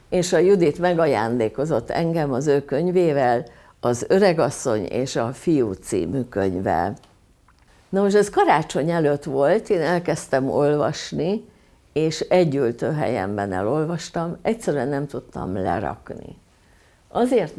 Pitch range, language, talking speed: 125-180 Hz, Hungarian, 110 wpm